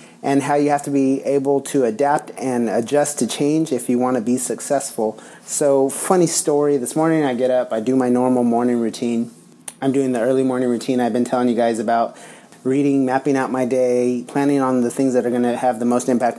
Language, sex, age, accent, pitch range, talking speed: English, male, 30-49, American, 115-130 Hz, 225 wpm